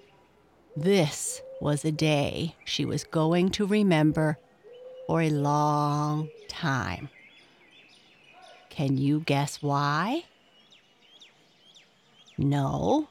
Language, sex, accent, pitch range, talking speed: English, female, American, 155-200 Hz, 80 wpm